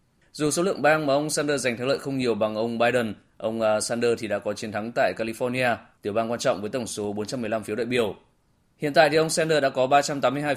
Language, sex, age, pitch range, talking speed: Vietnamese, male, 20-39, 110-140 Hz, 245 wpm